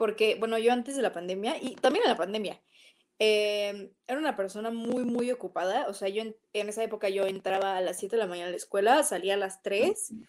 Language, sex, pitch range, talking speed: Spanish, female, 195-235 Hz, 240 wpm